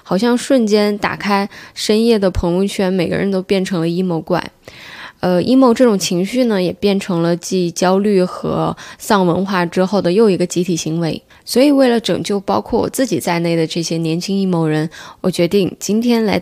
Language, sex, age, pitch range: Chinese, female, 10-29, 180-225 Hz